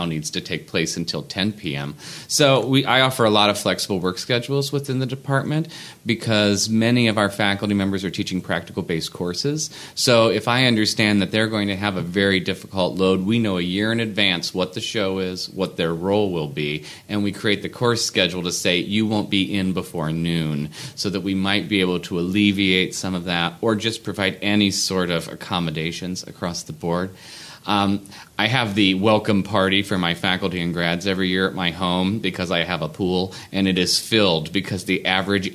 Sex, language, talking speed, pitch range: male, English, 200 wpm, 90-110 Hz